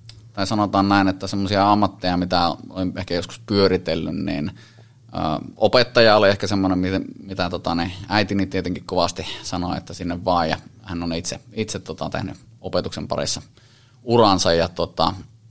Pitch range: 90-110 Hz